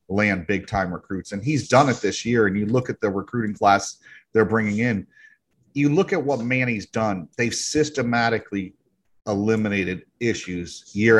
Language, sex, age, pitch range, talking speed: English, male, 40-59, 105-130 Hz, 165 wpm